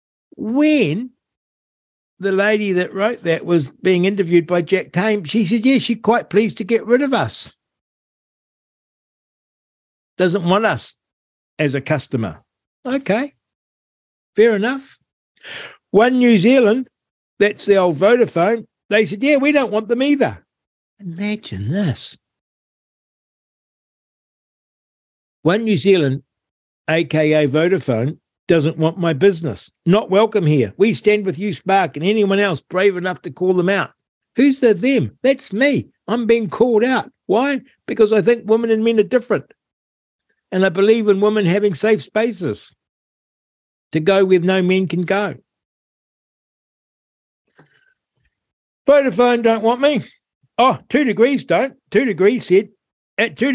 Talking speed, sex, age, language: 135 wpm, male, 50-69, German